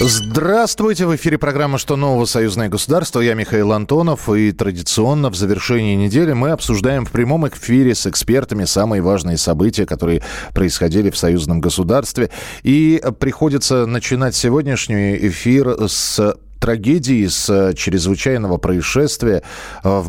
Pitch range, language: 90-125 Hz, Russian